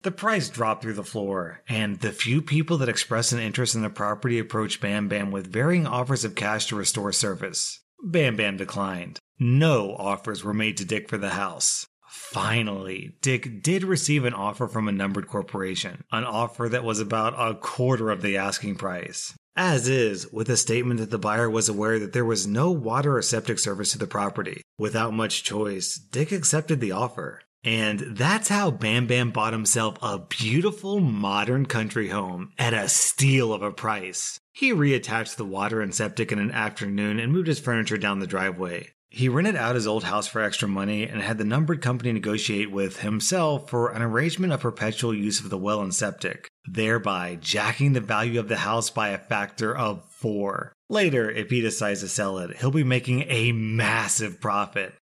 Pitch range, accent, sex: 105-125 Hz, American, male